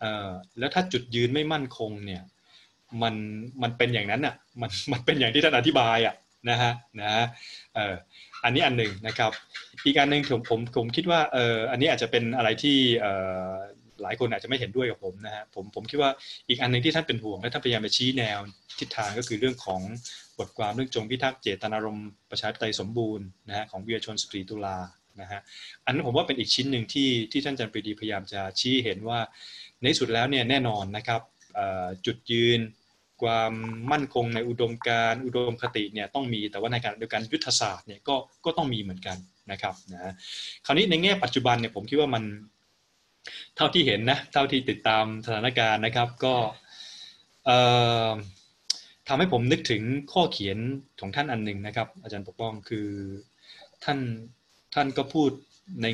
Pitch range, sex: 105-130 Hz, male